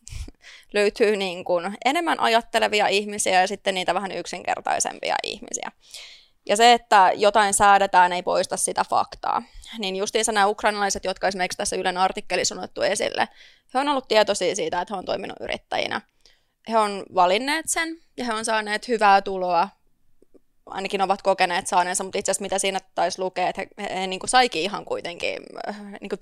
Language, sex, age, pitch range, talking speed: Finnish, female, 20-39, 190-225 Hz, 160 wpm